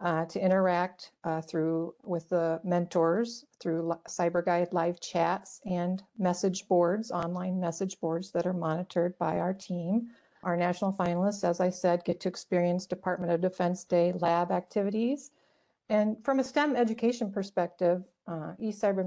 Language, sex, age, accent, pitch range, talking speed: English, female, 50-69, American, 175-200 Hz, 150 wpm